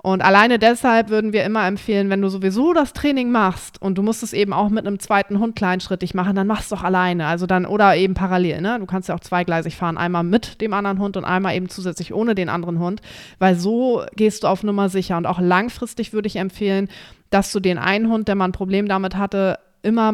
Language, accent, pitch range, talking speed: German, German, 180-210 Hz, 240 wpm